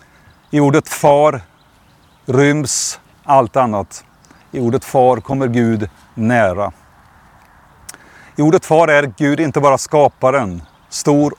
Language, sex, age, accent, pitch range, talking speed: Swedish, male, 50-69, native, 105-140 Hz, 110 wpm